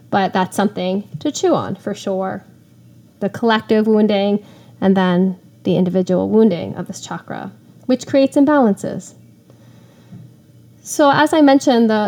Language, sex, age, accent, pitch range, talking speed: English, female, 10-29, American, 190-240 Hz, 135 wpm